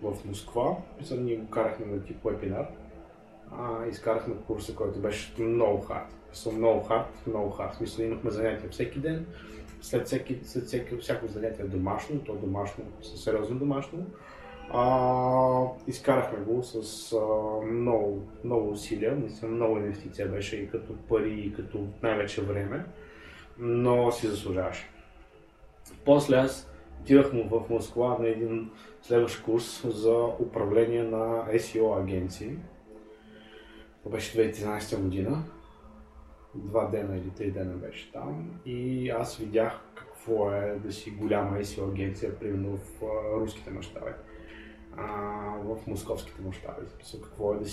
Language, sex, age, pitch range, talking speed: Bulgarian, male, 20-39, 100-115 Hz, 130 wpm